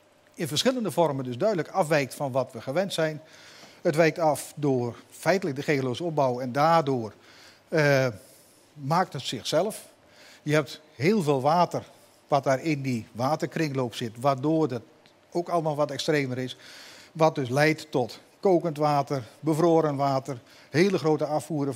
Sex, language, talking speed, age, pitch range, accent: male, Dutch, 150 wpm, 50-69, 135-165 Hz, Dutch